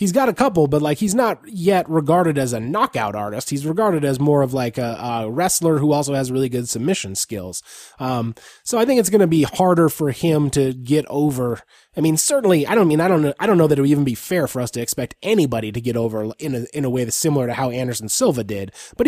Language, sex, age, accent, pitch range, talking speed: English, male, 20-39, American, 130-180 Hz, 260 wpm